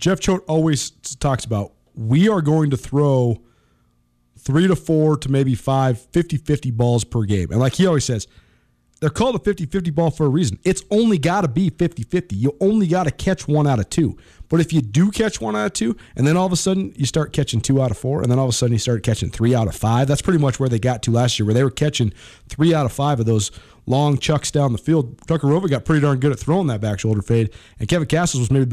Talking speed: 260 wpm